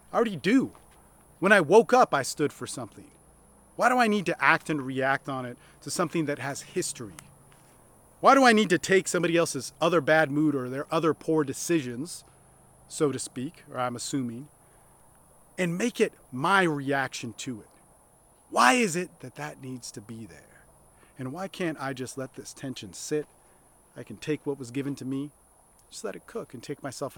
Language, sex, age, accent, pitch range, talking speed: English, male, 40-59, American, 125-165 Hz, 195 wpm